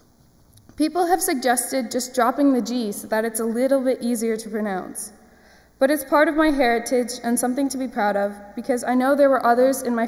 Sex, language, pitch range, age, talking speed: female, English, 210-270 Hz, 20-39, 215 wpm